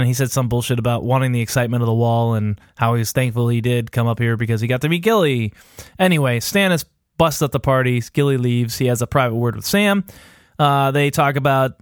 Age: 20-39